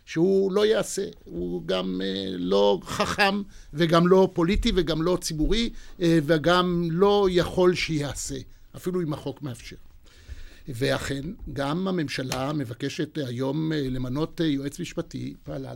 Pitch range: 135-175 Hz